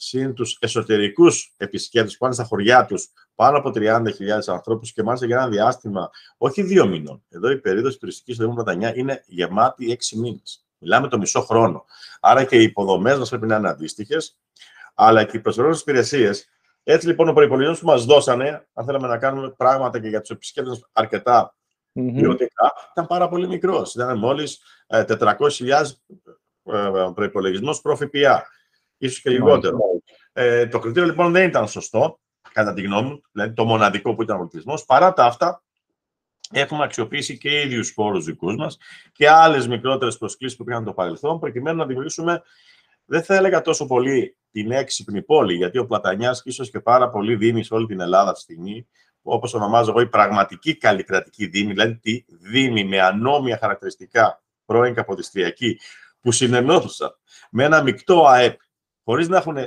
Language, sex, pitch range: Greek, male, 110-145 Hz